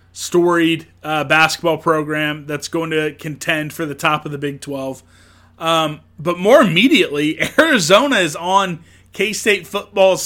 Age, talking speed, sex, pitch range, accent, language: 30-49, 140 wpm, male, 155-185 Hz, American, English